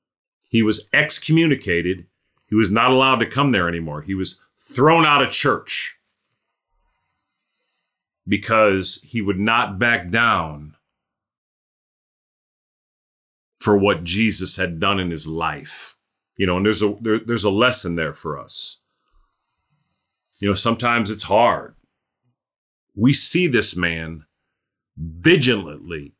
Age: 40-59